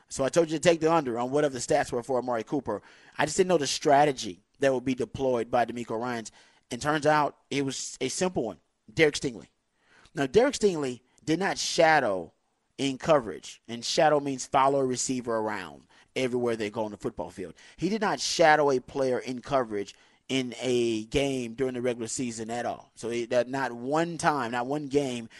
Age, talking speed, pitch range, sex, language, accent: 30-49, 200 wpm, 120-155 Hz, male, English, American